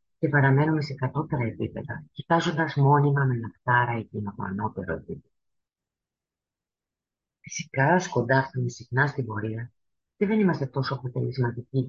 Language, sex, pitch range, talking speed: Greek, female, 115-150 Hz, 120 wpm